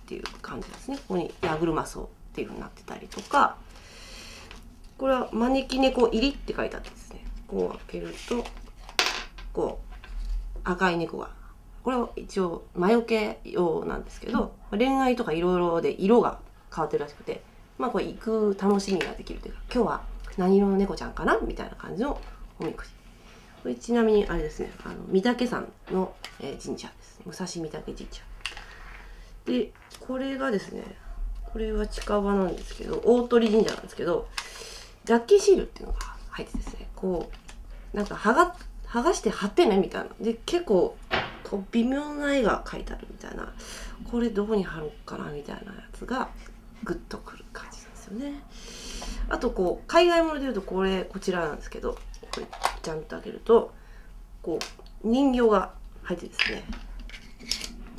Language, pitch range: Japanese, 195-250 Hz